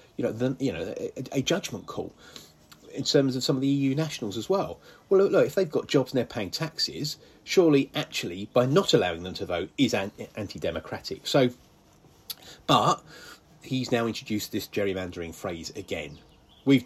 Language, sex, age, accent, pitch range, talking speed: English, male, 30-49, British, 95-125 Hz, 175 wpm